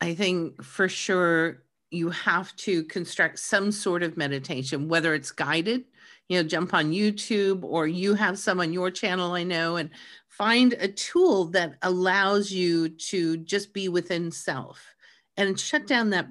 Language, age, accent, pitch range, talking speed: English, 50-69, American, 155-205 Hz, 165 wpm